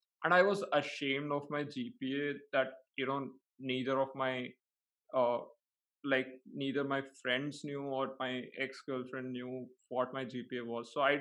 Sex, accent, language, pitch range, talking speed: male, Indian, English, 130-170 Hz, 160 wpm